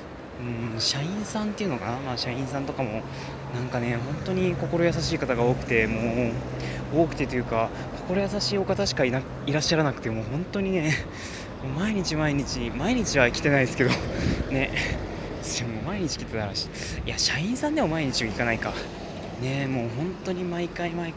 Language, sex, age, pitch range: Japanese, male, 20-39, 110-160 Hz